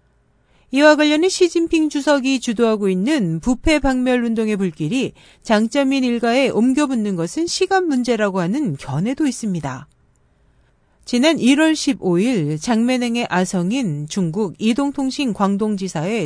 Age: 40-59